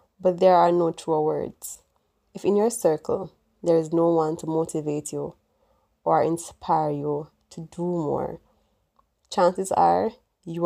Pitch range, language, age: 160-195 Hz, English, 20-39